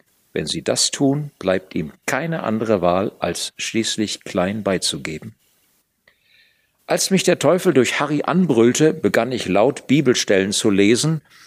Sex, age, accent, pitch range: male, 50-69, German, 105-150 Hz